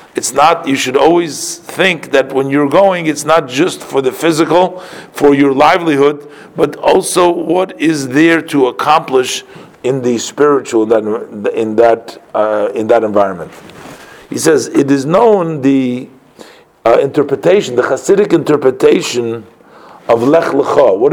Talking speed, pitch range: 145 wpm, 130-180 Hz